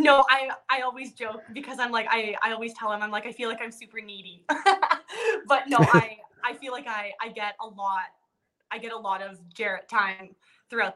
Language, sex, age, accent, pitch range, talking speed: English, female, 20-39, American, 190-230 Hz, 220 wpm